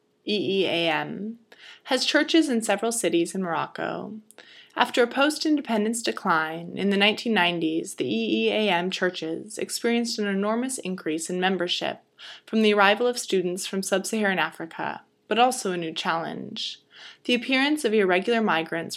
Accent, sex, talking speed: American, female, 135 wpm